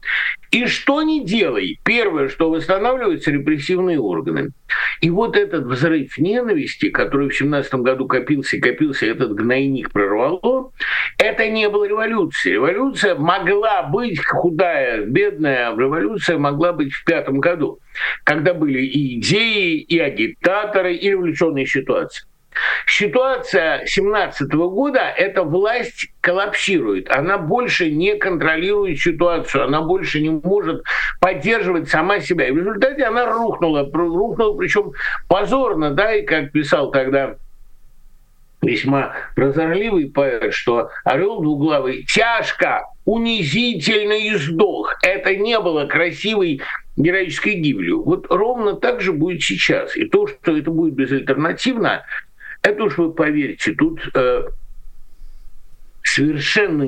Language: Russian